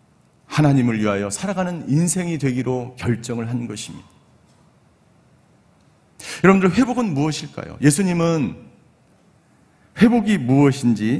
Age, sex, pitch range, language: 40-59, male, 120-170 Hz, Korean